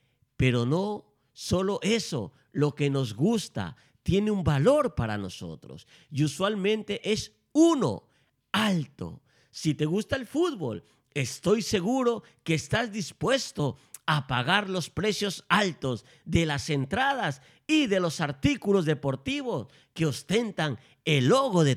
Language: Spanish